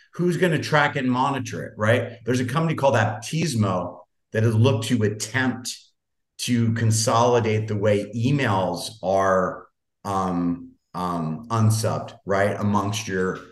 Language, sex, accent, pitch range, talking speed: English, male, American, 100-120 Hz, 130 wpm